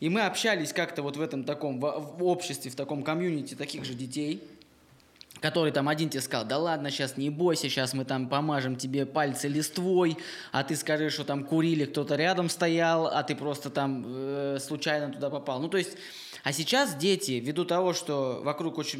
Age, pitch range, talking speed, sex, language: 20-39, 140-170 Hz, 195 wpm, male, Russian